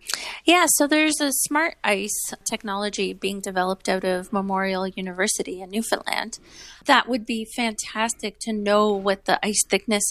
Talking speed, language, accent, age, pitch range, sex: 150 wpm, English, American, 30-49, 210-265 Hz, female